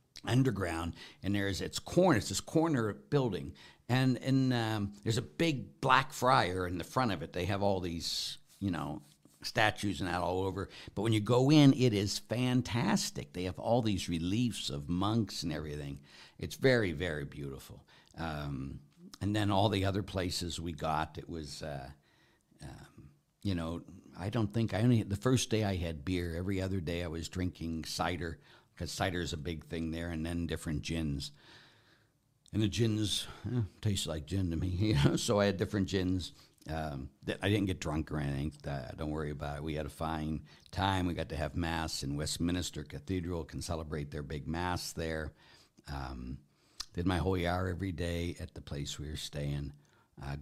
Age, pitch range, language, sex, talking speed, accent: 60-79, 80-100 Hz, English, male, 190 wpm, American